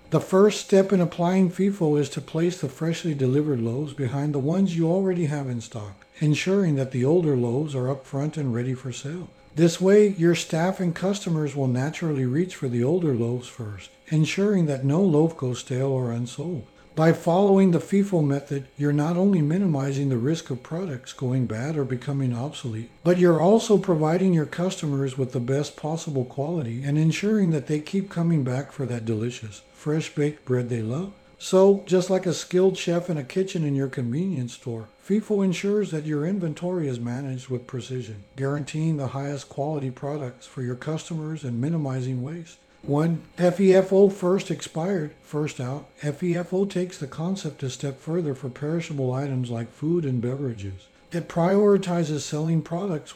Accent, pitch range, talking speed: American, 130-175 Hz, 175 wpm